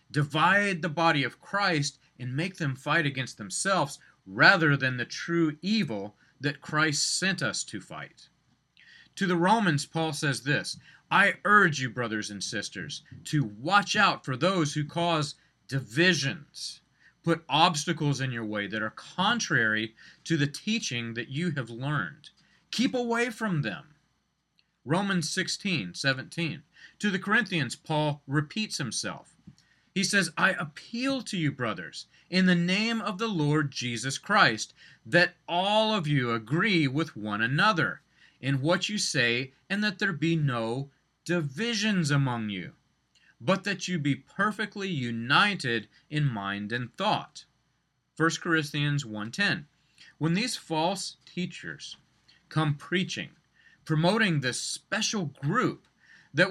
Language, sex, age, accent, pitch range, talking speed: English, male, 40-59, American, 140-185 Hz, 135 wpm